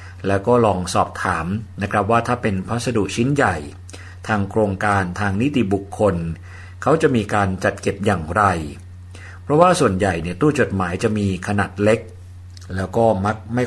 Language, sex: Thai, male